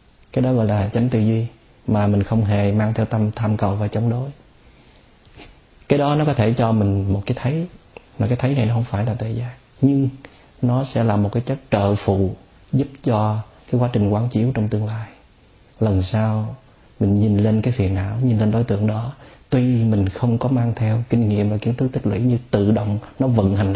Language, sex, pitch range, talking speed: Vietnamese, male, 105-125 Hz, 225 wpm